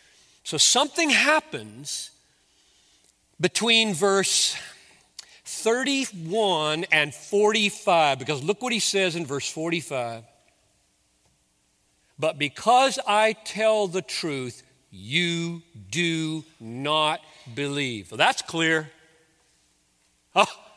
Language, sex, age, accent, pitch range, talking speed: English, male, 40-59, American, 160-270 Hz, 85 wpm